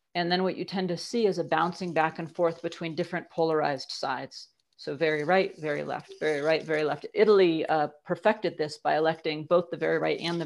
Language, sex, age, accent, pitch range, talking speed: English, female, 40-59, American, 160-185 Hz, 220 wpm